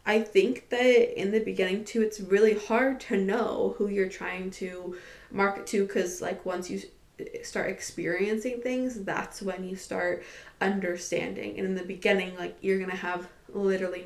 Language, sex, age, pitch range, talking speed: English, female, 20-39, 180-215 Hz, 170 wpm